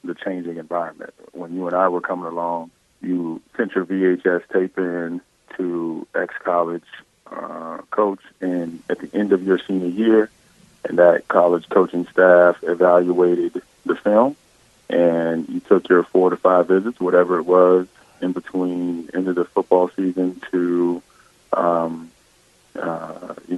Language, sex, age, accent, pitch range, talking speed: English, male, 30-49, American, 85-95 Hz, 150 wpm